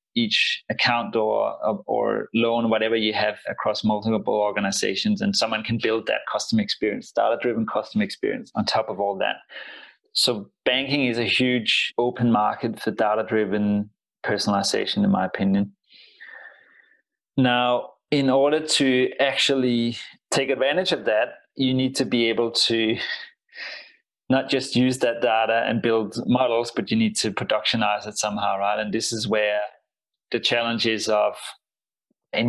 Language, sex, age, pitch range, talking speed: English, male, 20-39, 110-125 Hz, 145 wpm